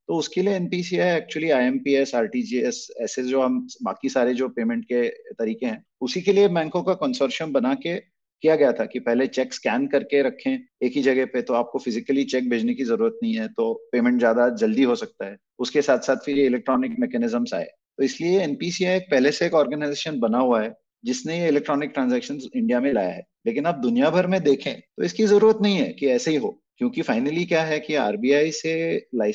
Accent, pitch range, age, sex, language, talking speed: native, 135-185 Hz, 30-49, male, Hindi, 145 wpm